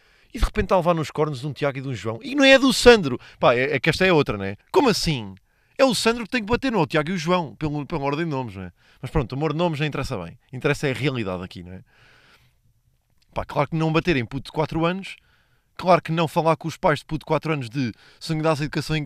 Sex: male